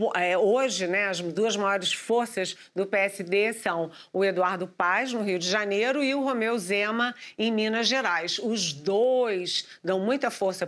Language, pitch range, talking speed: Portuguese, 185-240 Hz, 155 wpm